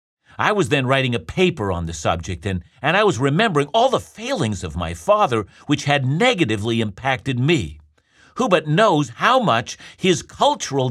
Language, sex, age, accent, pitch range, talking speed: English, male, 50-69, American, 105-155 Hz, 175 wpm